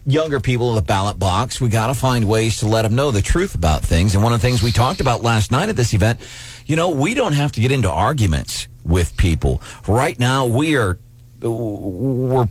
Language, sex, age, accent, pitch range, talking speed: English, male, 40-59, American, 90-120 Hz, 220 wpm